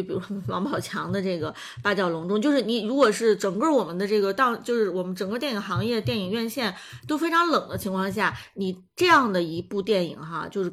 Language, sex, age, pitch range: Chinese, female, 20-39, 195-255 Hz